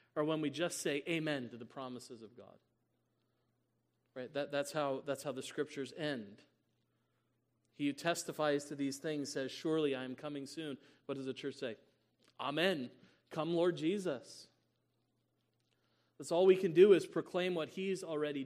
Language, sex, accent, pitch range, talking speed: English, male, American, 130-170 Hz, 165 wpm